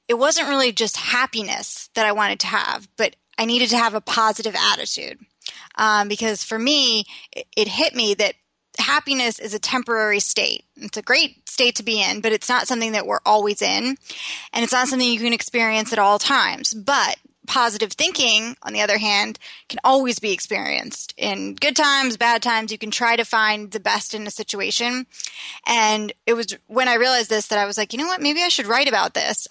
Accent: American